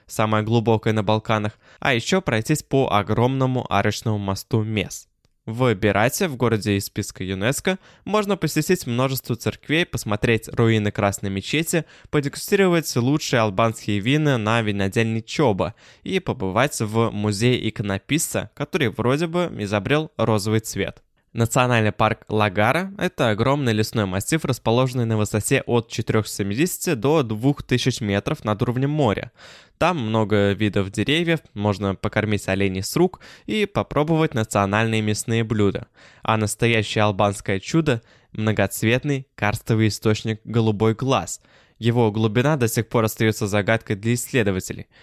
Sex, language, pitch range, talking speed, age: male, Russian, 105-130 Hz, 130 wpm, 20-39